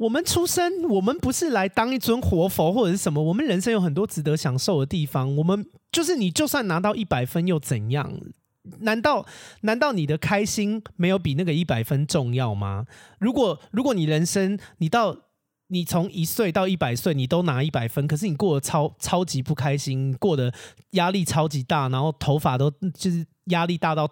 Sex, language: male, Chinese